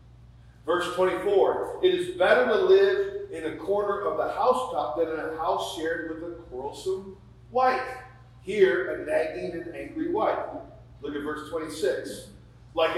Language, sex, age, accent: English, male, 40-59, American